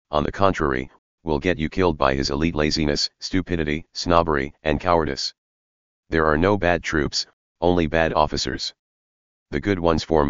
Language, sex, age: English, male, 40-59